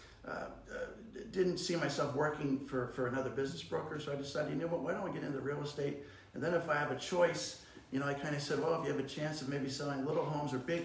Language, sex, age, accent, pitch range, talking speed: English, male, 50-69, American, 125-150 Hz, 280 wpm